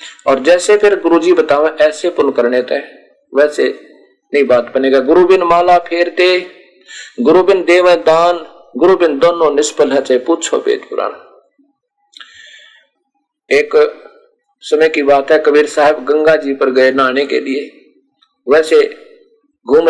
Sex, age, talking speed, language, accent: male, 50-69, 125 wpm, Hindi, native